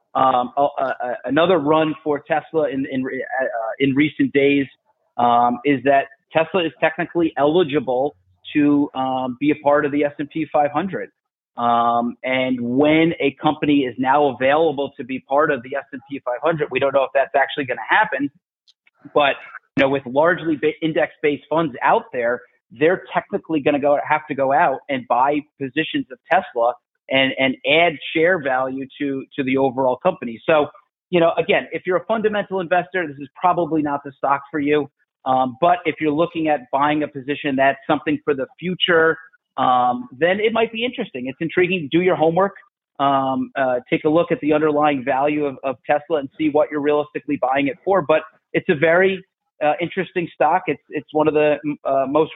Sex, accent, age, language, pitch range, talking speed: male, American, 30-49, English, 135-165 Hz, 185 wpm